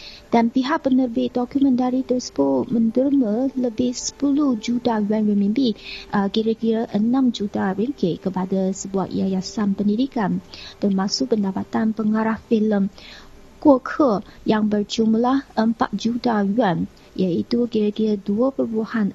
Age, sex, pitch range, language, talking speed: 30-49, female, 200-245 Hz, Malay, 105 wpm